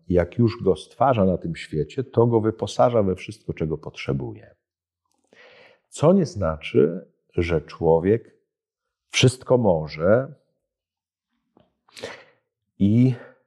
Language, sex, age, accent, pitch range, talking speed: Polish, male, 50-69, native, 95-135 Hz, 100 wpm